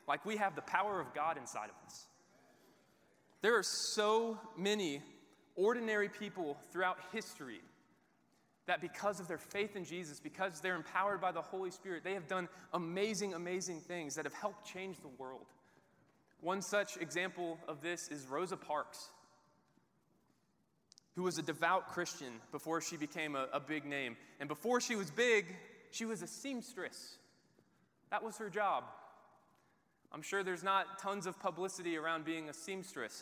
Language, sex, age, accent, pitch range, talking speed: English, male, 20-39, American, 155-195 Hz, 160 wpm